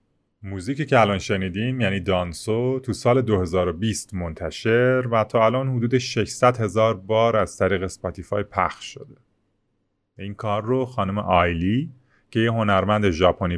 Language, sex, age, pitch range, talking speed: Persian, male, 30-49, 90-115 Hz, 135 wpm